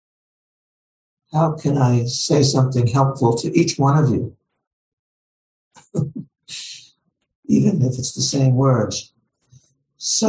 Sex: male